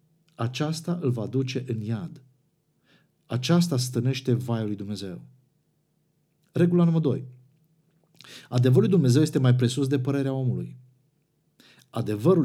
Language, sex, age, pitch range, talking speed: Romanian, male, 50-69, 125-155 Hz, 115 wpm